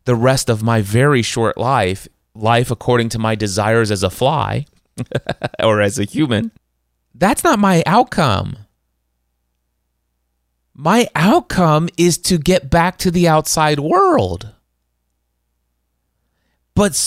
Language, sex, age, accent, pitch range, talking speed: English, male, 30-49, American, 100-150 Hz, 120 wpm